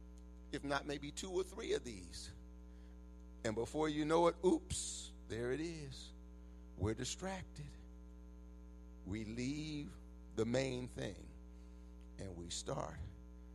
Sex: male